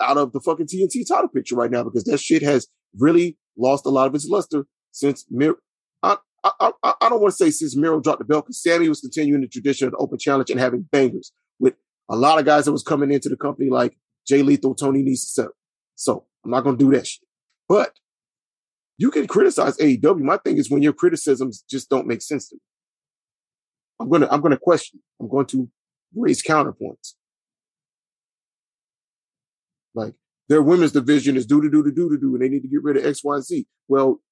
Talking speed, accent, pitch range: 215 wpm, American, 135-170 Hz